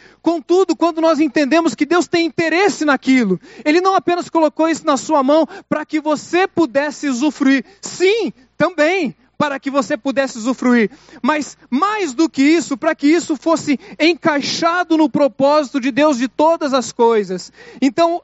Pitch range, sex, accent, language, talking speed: 225-315 Hz, male, Brazilian, Portuguese, 160 wpm